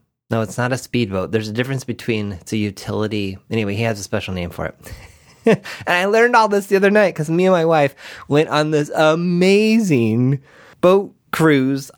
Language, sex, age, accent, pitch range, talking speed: English, male, 30-49, American, 110-155 Hz, 195 wpm